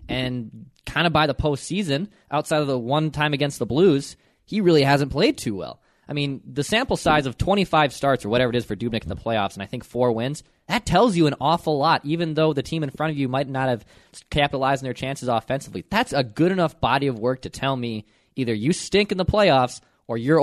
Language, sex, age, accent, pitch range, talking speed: English, male, 20-39, American, 120-155 Hz, 240 wpm